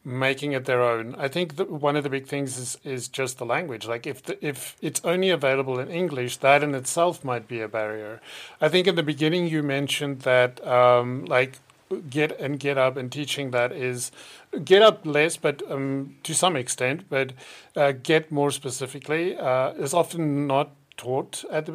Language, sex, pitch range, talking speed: English, male, 130-160 Hz, 195 wpm